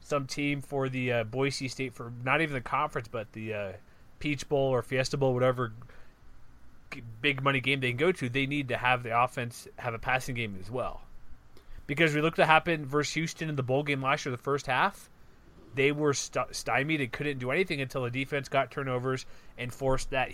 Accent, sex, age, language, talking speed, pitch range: American, male, 30-49, English, 215 wpm, 125-150 Hz